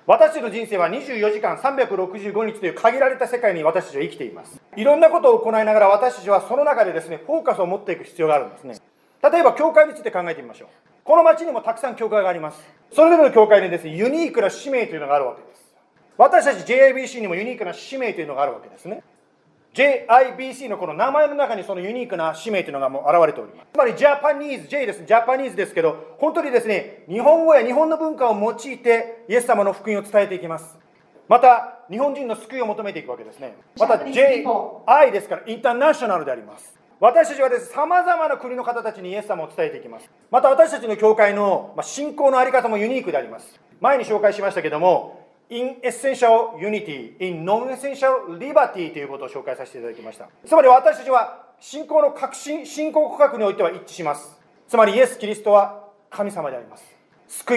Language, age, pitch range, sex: Japanese, 40-59, 205-275 Hz, male